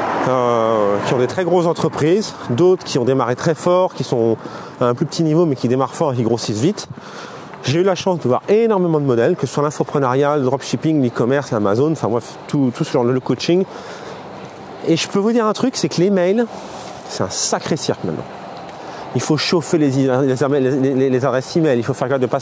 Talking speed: 230 wpm